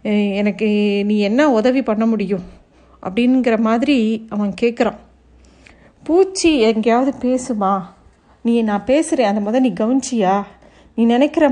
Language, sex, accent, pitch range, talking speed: Tamil, female, native, 225-280 Hz, 110 wpm